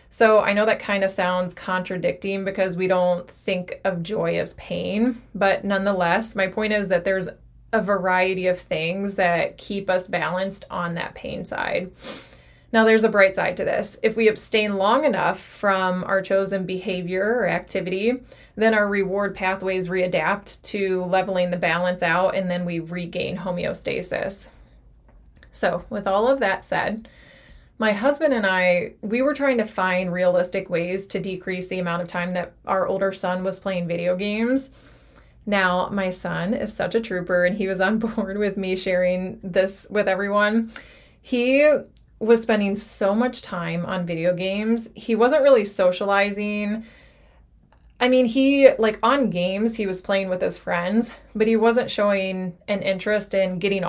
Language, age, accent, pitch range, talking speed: English, 20-39, American, 185-215 Hz, 165 wpm